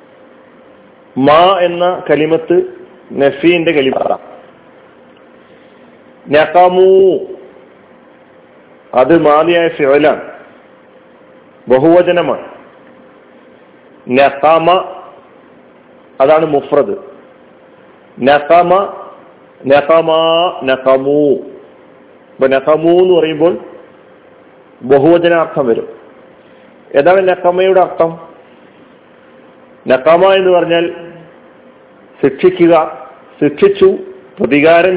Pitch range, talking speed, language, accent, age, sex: 150-190 Hz, 45 wpm, Malayalam, native, 50-69, male